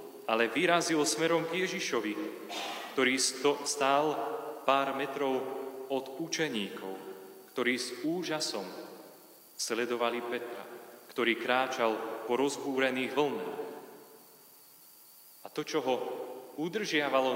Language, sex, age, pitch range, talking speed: Slovak, male, 30-49, 120-150 Hz, 95 wpm